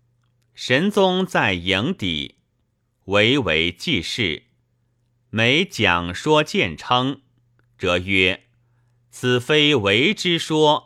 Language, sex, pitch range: Chinese, male, 100-120 Hz